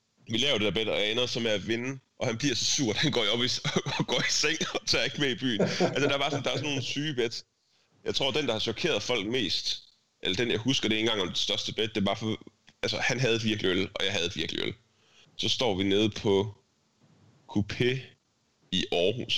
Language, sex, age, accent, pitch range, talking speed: Danish, male, 30-49, native, 100-125 Hz, 265 wpm